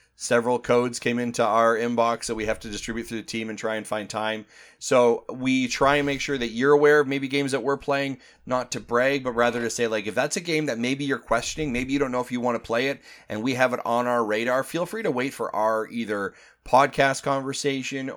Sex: male